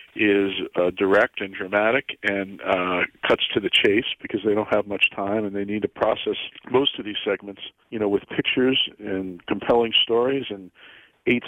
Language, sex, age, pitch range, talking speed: English, male, 40-59, 105-125 Hz, 185 wpm